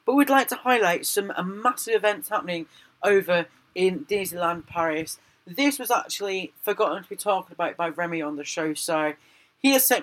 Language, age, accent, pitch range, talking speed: English, 40-59, British, 160-205 Hz, 180 wpm